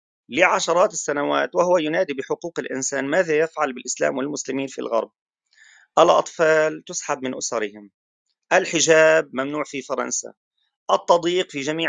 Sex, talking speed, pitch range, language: male, 115 wpm, 145-195 Hz, Arabic